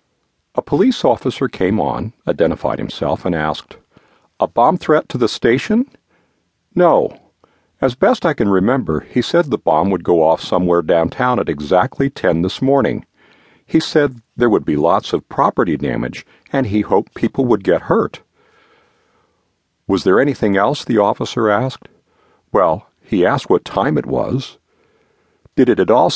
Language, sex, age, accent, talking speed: English, male, 50-69, American, 160 wpm